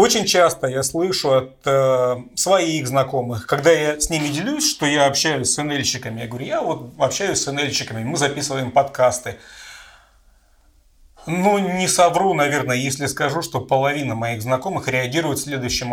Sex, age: male, 30-49